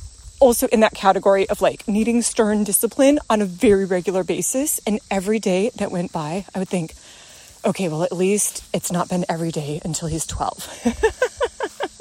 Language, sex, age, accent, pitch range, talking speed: English, female, 30-49, American, 205-290 Hz, 175 wpm